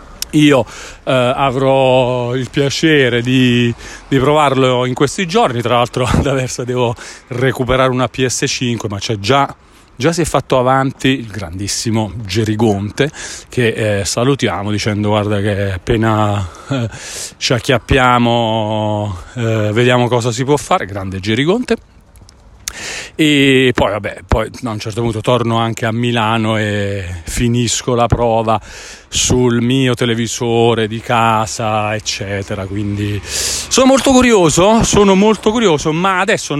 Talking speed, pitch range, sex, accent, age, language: 130 wpm, 110-155 Hz, male, native, 40-59, Italian